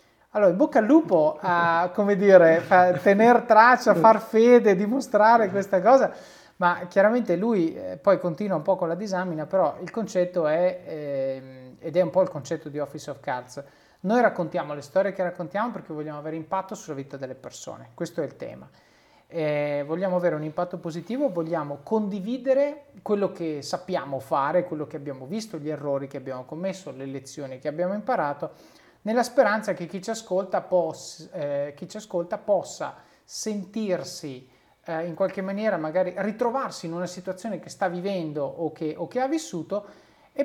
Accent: native